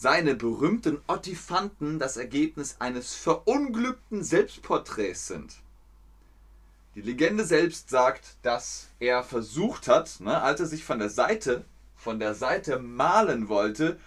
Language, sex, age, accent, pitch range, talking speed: German, male, 30-49, German, 105-175 Hz, 125 wpm